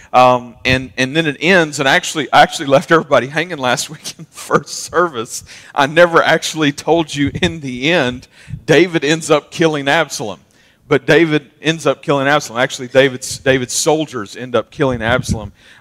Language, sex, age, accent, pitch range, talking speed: English, male, 40-59, American, 120-150 Hz, 170 wpm